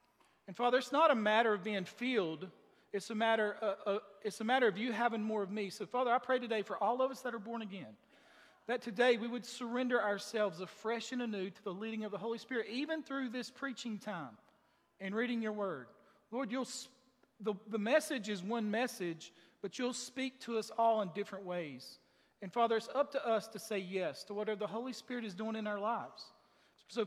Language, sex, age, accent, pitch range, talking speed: English, male, 40-59, American, 200-245 Hz, 220 wpm